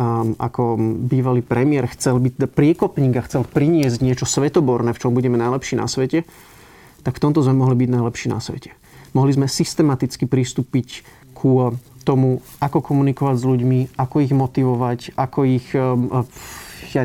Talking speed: 150 wpm